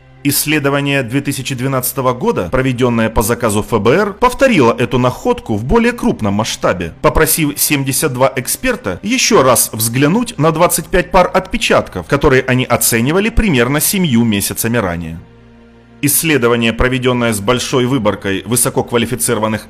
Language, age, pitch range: Russian, 30-49, 115-175 Hz